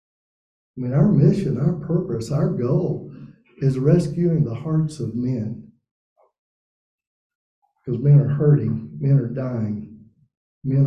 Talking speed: 120 wpm